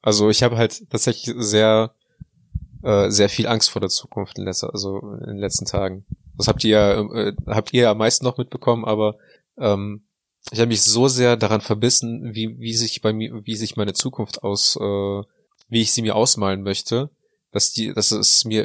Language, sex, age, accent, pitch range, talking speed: German, male, 20-39, German, 100-115 Hz, 205 wpm